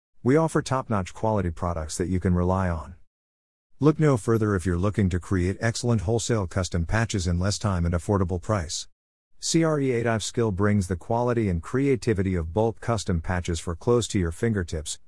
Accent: American